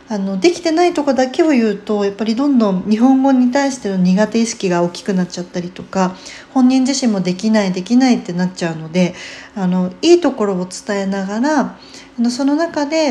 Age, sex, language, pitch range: 40-59, female, Japanese, 180-250 Hz